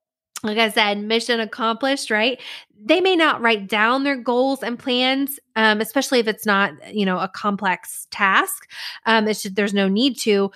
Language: English